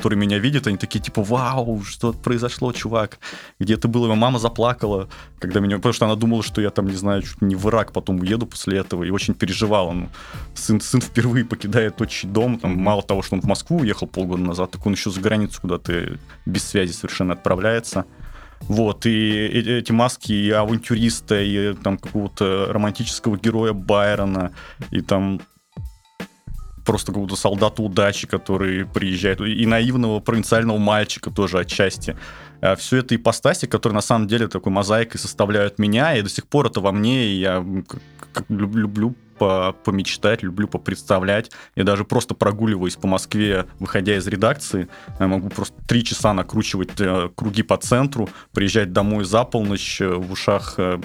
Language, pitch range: Russian, 95-115 Hz